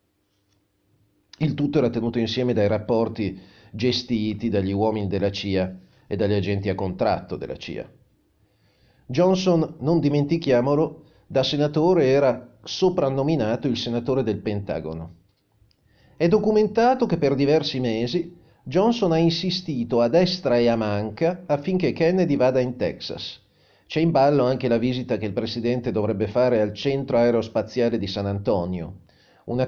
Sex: male